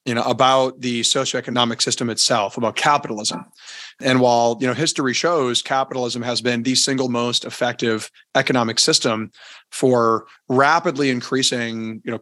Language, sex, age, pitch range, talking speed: English, male, 30-49, 120-135 Hz, 140 wpm